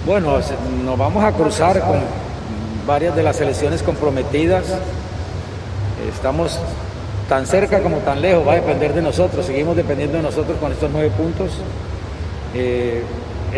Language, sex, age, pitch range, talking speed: Spanish, male, 40-59, 100-145 Hz, 135 wpm